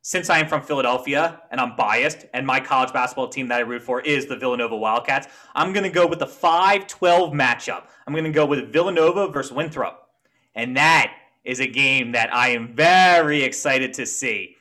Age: 20-39